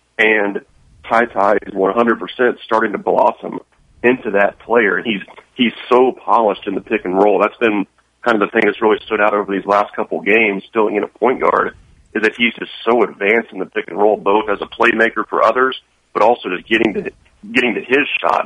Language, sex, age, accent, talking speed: English, male, 40-59, American, 200 wpm